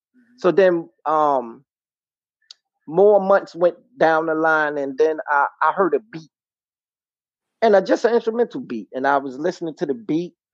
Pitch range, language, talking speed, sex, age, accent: 155-200 Hz, English, 160 wpm, male, 30-49, American